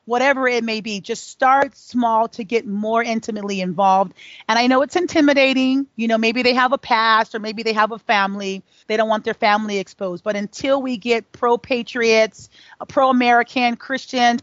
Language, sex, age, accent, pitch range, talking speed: English, female, 40-59, American, 205-250 Hz, 180 wpm